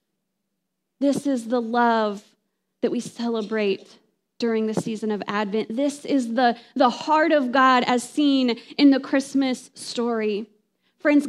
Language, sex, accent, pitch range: English, female, American, 245-345 Hz